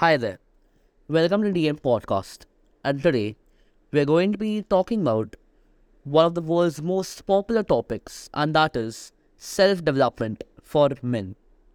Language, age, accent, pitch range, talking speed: English, 20-39, Indian, 135-165 Hz, 145 wpm